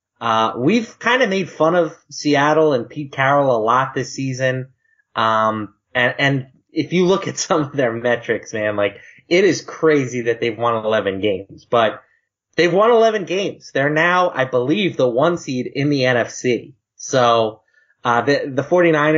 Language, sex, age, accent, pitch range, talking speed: English, male, 20-39, American, 115-150 Hz, 170 wpm